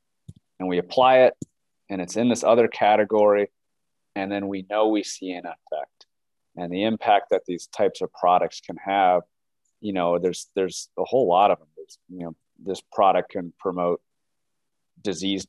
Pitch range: 90-110 Hz